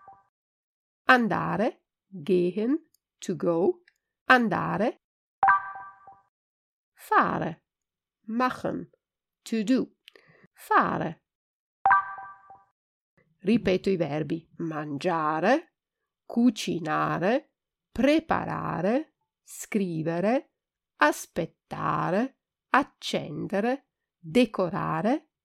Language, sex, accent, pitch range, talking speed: Italian, female, native, 175-255 Hz, 45 wpm